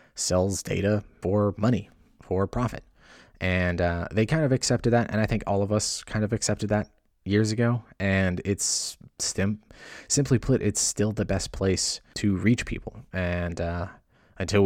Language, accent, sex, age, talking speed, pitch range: English, American, male, 20-39, 165 wpm, 90-105 Hz